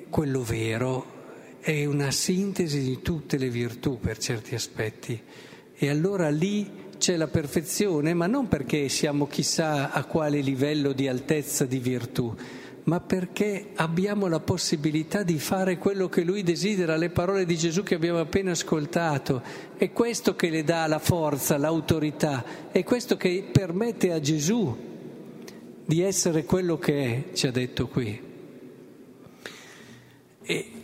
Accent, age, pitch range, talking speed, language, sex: native, 50-69, 130-175 Hz, 140 wpm, Italian, male